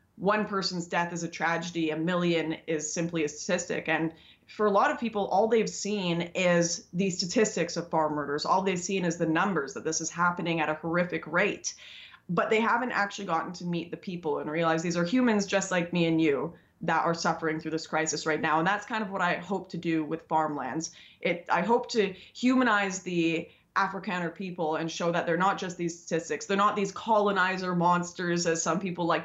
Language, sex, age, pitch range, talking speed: English, female, 20-39, 165-195 Hz, 210 wpm